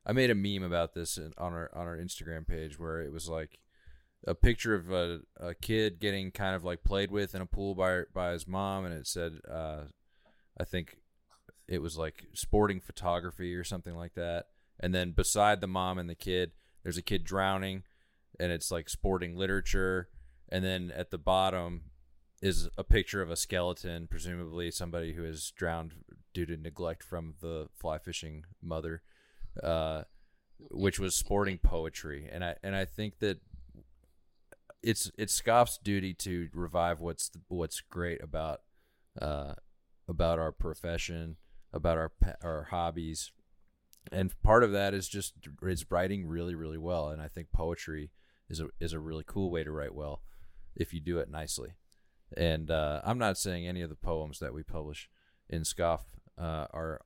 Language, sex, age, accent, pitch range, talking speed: English, male, 20-39, American, 80-95 Hz, 175 wpm